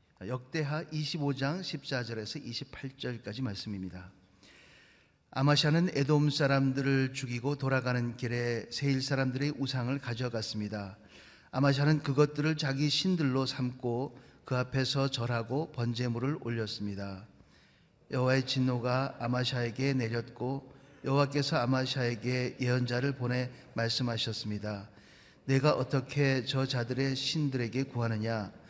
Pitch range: 120-140 Hz